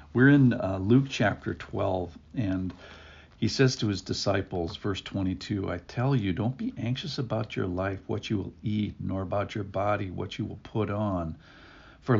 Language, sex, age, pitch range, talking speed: English, male, 50-69, 95-110 Hz, 180 wpm